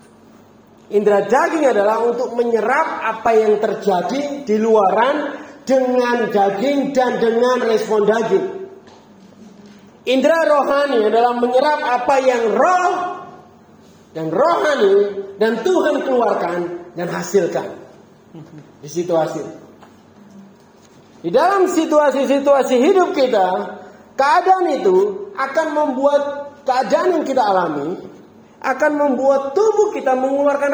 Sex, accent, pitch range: male, native, 220-320 Hz